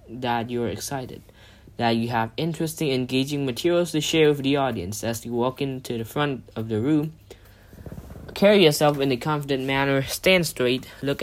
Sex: male